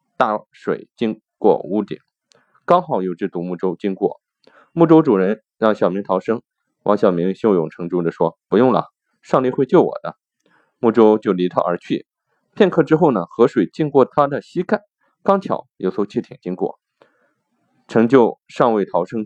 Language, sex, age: Chinese, male, 20-39